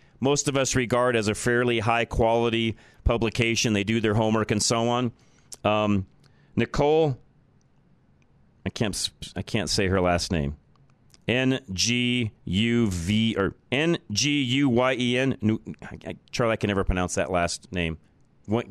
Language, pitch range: English, 100-130 Hz